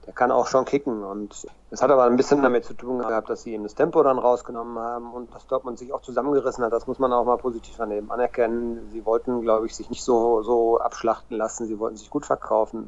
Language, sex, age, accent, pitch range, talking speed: German, male, 40-59, German, 110-125 Hz, 245 wpm